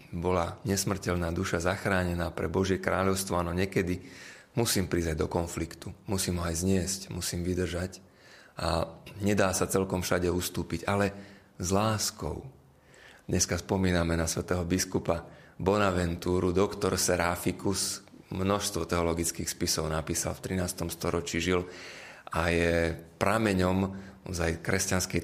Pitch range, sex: 85-100 Hz, male